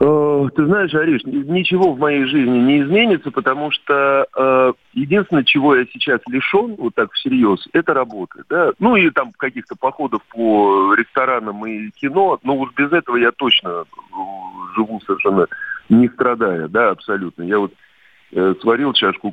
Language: Russian